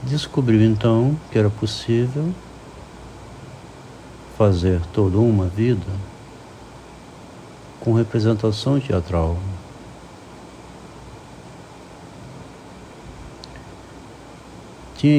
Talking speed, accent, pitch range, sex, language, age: 50 wpm, Brazilian, 95-125 Hz, male, Portuguese, 60-79